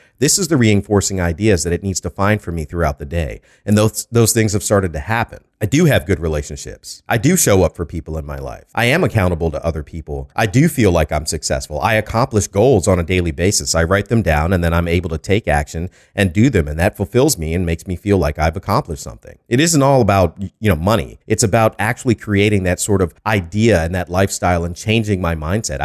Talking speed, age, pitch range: 240 wpm, 40-59, 85-110 Hz